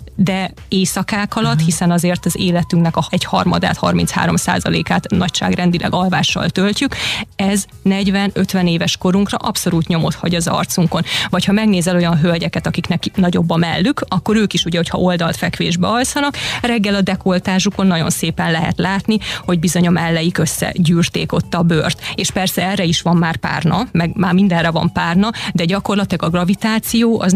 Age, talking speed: 20-39, 160 wpm